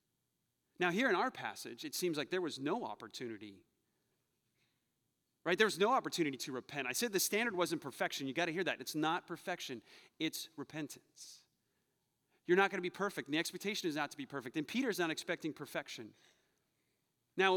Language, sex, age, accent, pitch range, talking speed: English, male, 30-49, American, 160-220 Hz, 190 wpm